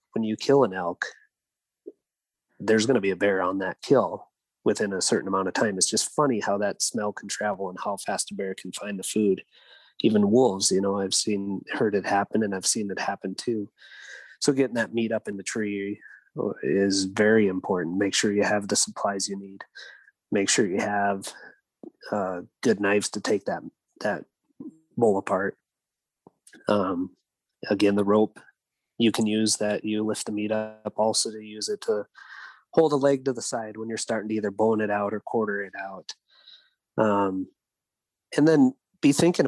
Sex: male